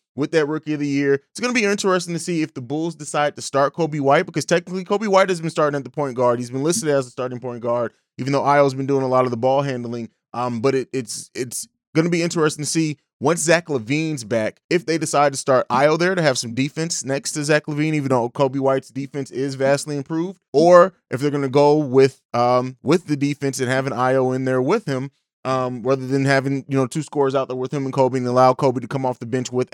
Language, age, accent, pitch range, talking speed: English, 20-39, American, 130-150 Hz, 260 wpm